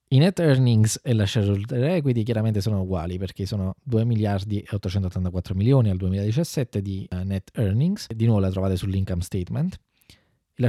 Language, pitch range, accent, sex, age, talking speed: Italian, 95-125 Hz, native, male, 20-39, 165 wpm